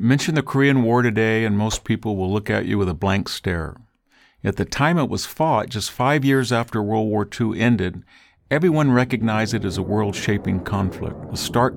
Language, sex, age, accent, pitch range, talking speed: English, male, 50-69, American, 100-120 Hz, 200 wpm